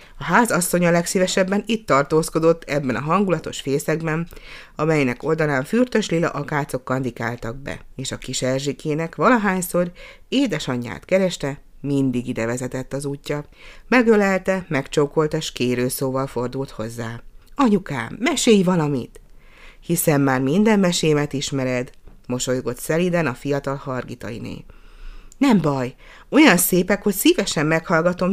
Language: Hungarian